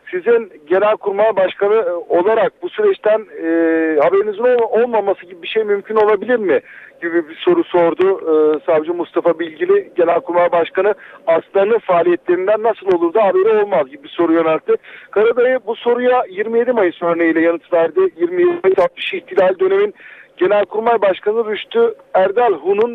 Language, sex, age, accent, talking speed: Turkish, male, 50-69, native, 140 wpm